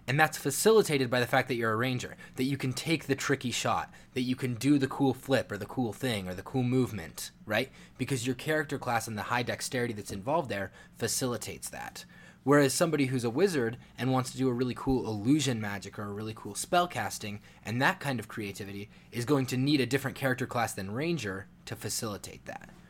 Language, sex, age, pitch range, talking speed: English, male, 20-39, 115-140 Hz, 220 wpm